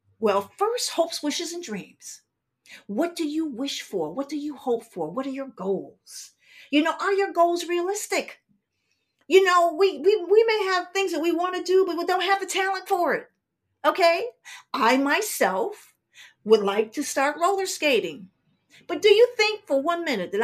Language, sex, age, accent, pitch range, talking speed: English, female, 50-69, American, 245-370 Hz, 190 wpm